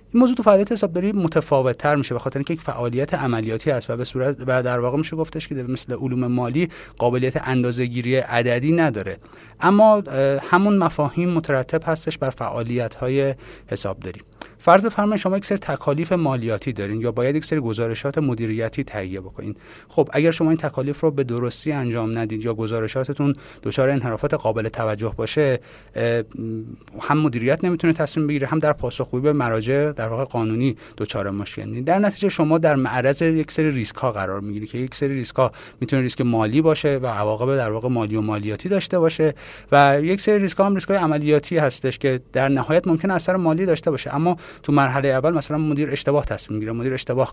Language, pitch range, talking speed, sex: Persian, 120-160 Hz, 190 wpm, male